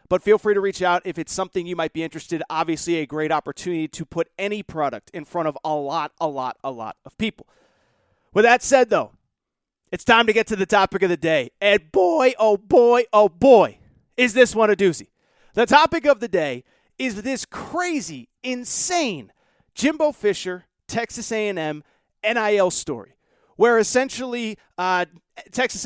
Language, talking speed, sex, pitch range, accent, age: English, 175 wpm, male, 185-245 Hz, American, 30-49